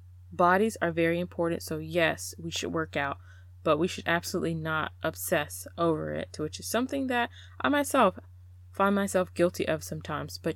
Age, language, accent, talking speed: 20-39, English, American, 170 wpm